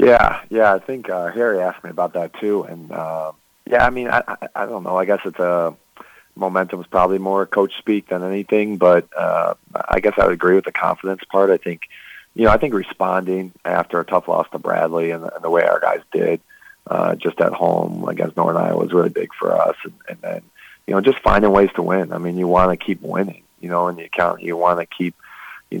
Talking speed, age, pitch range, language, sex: 245 wpm, 30-49, 85-100 Hz, English, male